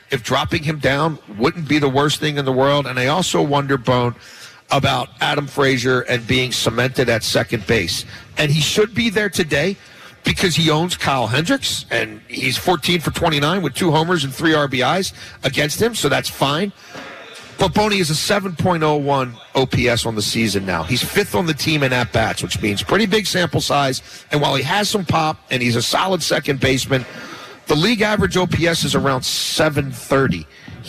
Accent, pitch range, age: American, 135-205 Hz, 50-69